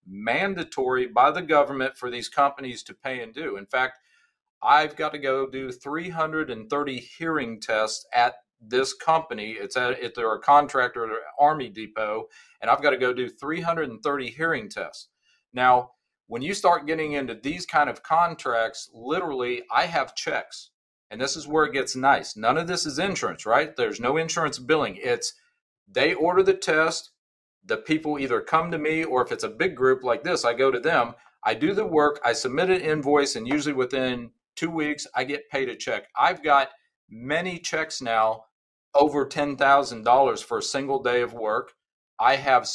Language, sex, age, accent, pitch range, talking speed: English, male, 40-59, American, 125-160 Hz, 180 wpm